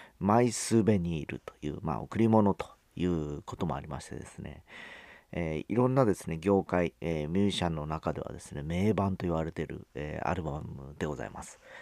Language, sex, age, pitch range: Japanese, male, 40-59, 80-110 Hz